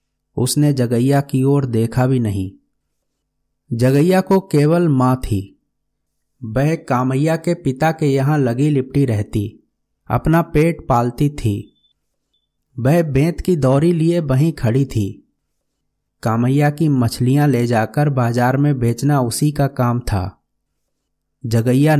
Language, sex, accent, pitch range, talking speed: Hindi, male, native, 120-155 Hz, 125 wpm